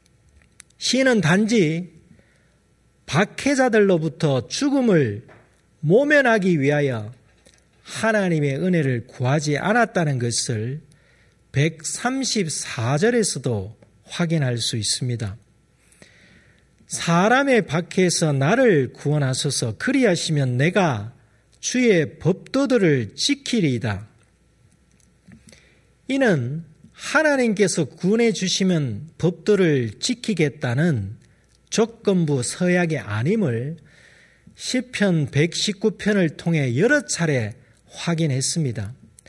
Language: Korean